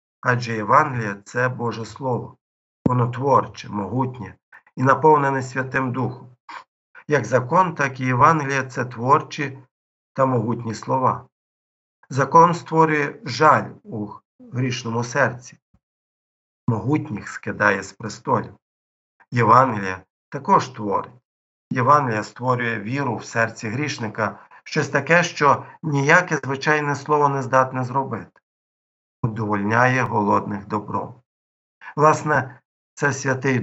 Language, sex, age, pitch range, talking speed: Ukrainian, male, 50-69, 110-135 Hz, 105 wpm